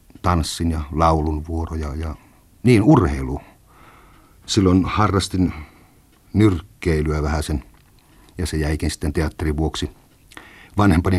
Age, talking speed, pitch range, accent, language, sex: 50-69, 95 wpm, 80-100 Hz, native, Finnish, male